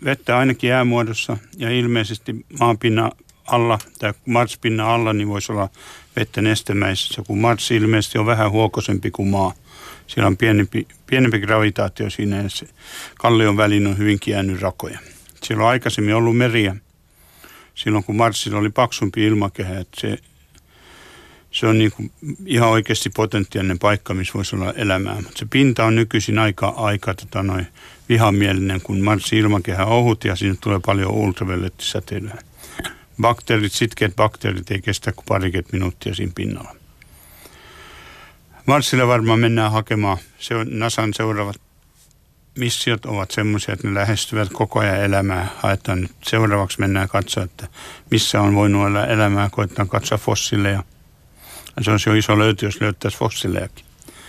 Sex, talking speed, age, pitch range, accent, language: male, 135 wpm, 60-79, 100-115 Hz, native, Finnish